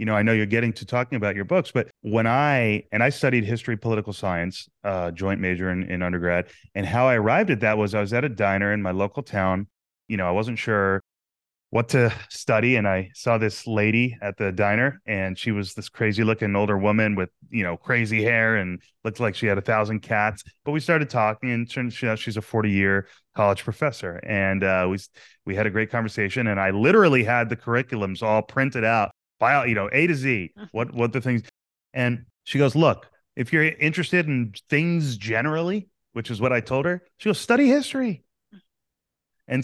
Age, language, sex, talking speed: 30-49, English, male, 205 wpm